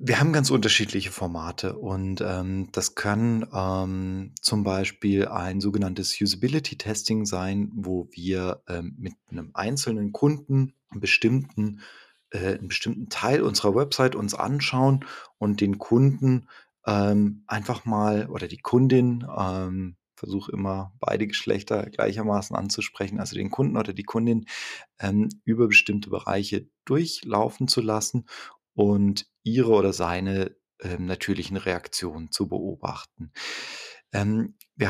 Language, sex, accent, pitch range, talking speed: German, male, German, 95-115 Hz, 120 wpm